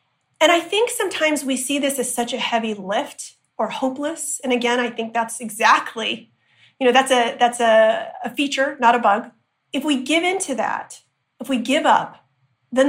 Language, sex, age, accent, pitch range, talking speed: English, female, 40-59, American, 225-265 Hz, 190 wpm